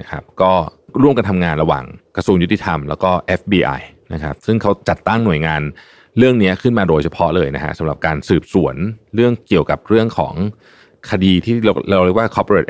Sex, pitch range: male, 80-105 Hz